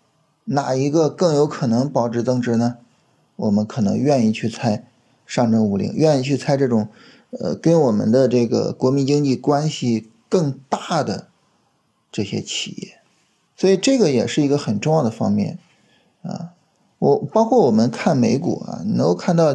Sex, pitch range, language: male, 120-175 Hz, Chinese